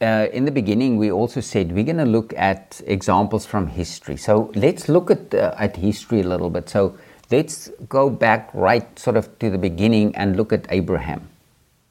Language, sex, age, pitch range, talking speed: English, male, 50-69, 100-130 Hz, 195 wpm